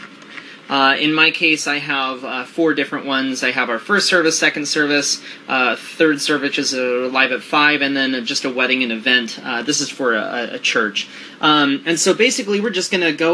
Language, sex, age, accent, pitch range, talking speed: English, male, 20-39, American, 130-165 Hz, 210 wpm